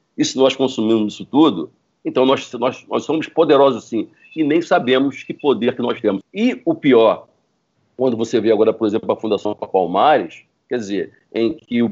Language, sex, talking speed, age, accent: Portuguese, male, 190 wpm, 50-69, Brazilian